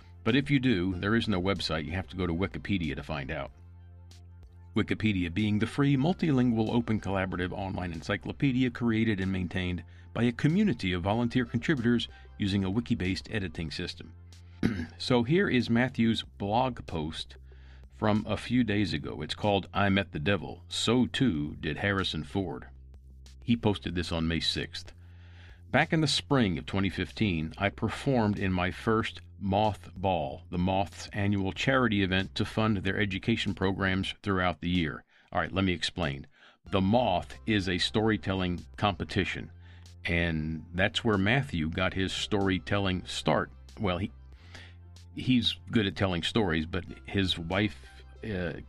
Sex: male